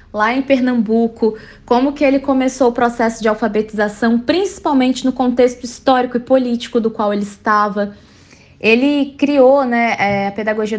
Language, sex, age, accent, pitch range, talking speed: Portuguese, female, 20-39, Brazilian, 210-245 Hz, 145 wpm